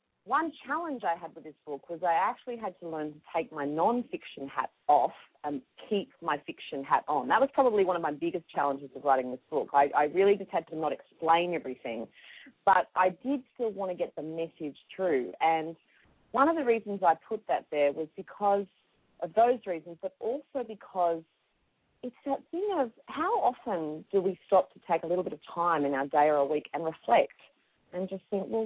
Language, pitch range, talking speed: English, 165-230 Hz, 210 wpm